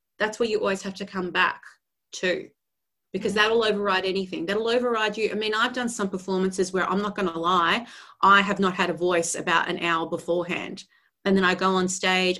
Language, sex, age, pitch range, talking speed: English, female, 30-49, 185-255 Hz, 215 wpm